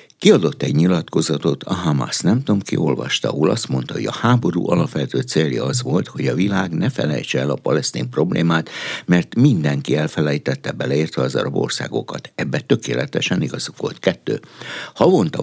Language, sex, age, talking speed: Hungarian, male, 60-79, 160 wpm